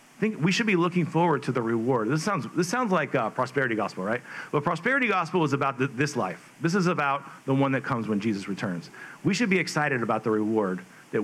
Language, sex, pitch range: English, male, 125-175 Hz